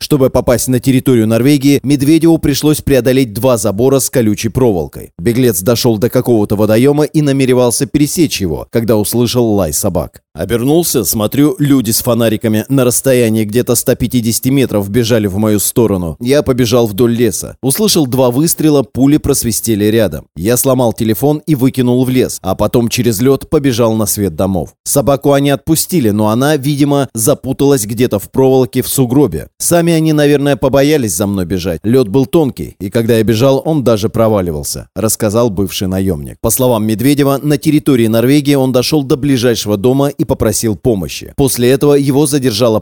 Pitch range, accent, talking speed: 110-140 Hz, native, 160 wpm